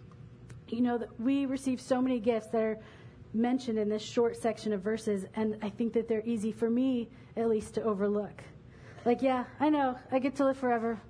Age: 40-59